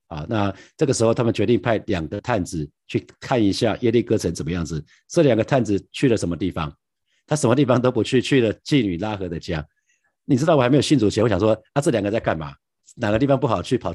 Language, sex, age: Chinese, male, 50-69